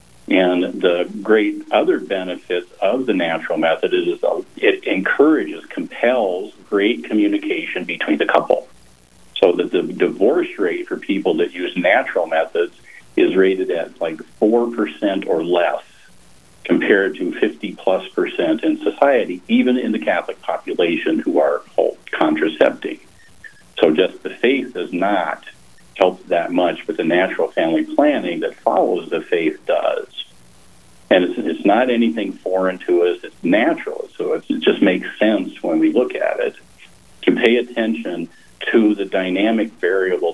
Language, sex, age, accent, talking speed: English, male, 50-69, American, 145 wpm